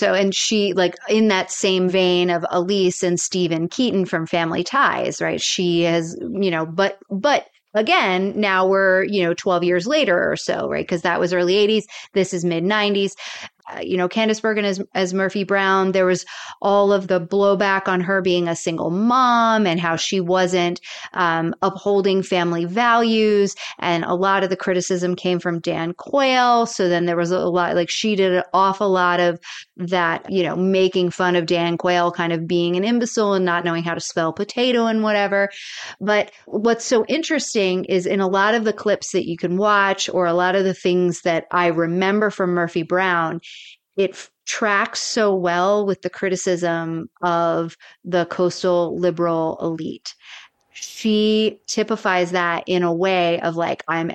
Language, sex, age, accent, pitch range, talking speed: English, female, 30-49, American, 175-200 Hz, 185 wpm